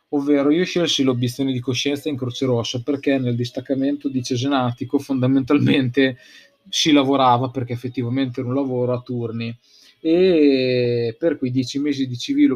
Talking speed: 150 wpm